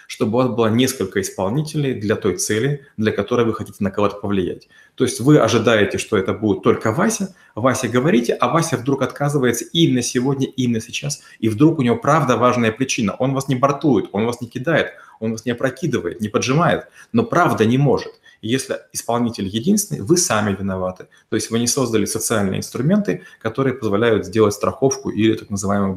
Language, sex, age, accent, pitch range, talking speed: Russian, male, 30-49, native, 110-140 Hz, 185 wpm